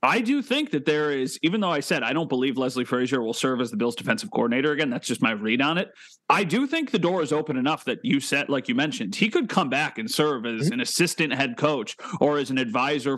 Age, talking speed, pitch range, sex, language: 30-49, 265 wpm, 130-175 Hz, male, English